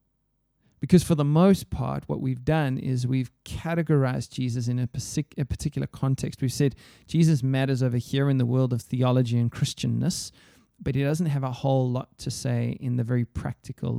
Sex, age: male, 20-39